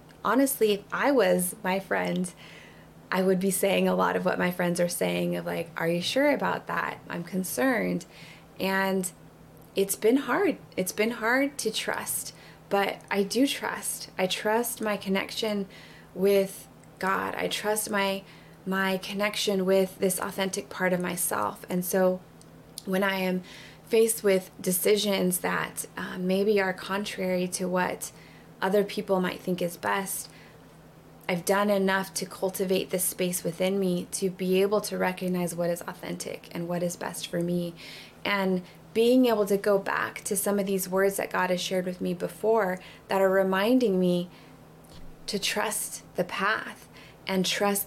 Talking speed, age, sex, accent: 160 wpm, 20-39, female, American